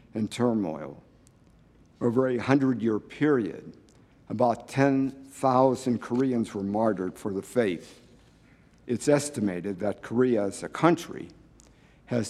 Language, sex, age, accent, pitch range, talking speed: English, male, 60-79, American, 110-130 Hz, 110 wpm